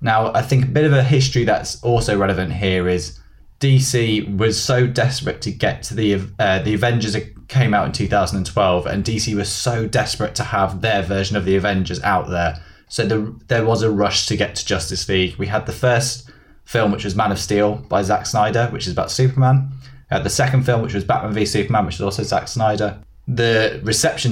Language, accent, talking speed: English, British, 215 wpm